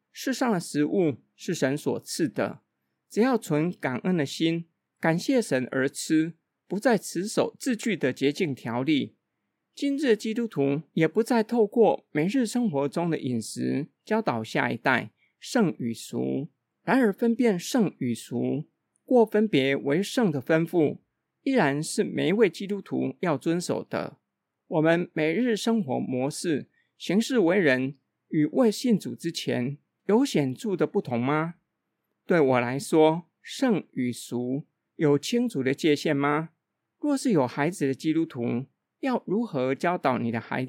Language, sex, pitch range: Chinese, male, 135-210 Hz